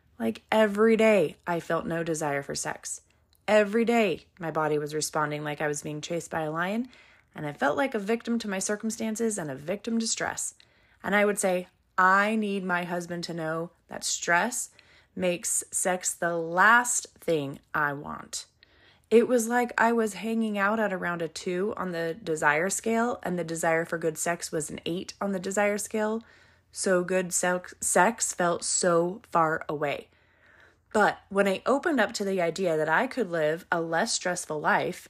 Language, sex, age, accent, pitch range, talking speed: English, female, 20-39, American, 165-215 Hz, 185 wpm